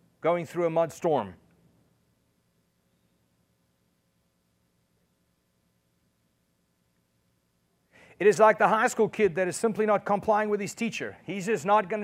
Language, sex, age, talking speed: English, male, 40-59, 120 wpm